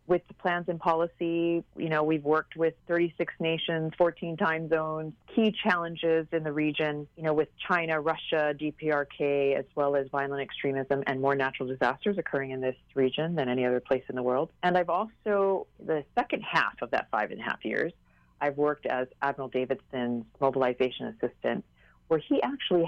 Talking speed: 180 wpm